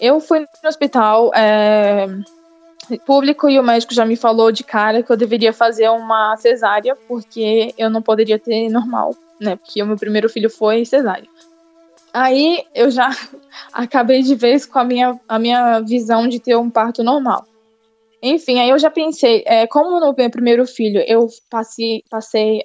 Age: 10-29